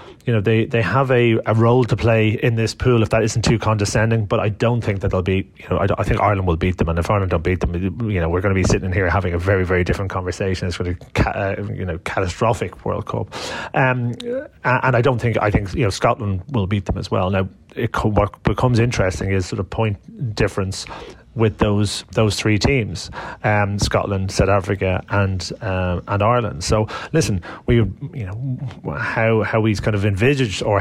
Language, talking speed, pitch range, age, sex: English, 220 wpm, 100-120 Hz, 30-49, male